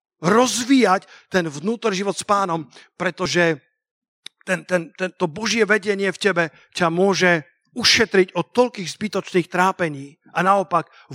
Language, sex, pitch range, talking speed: Slovak, male, 160-210 Hz, 125 wpm